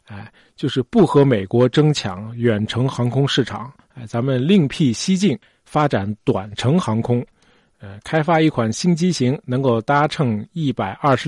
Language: Chinese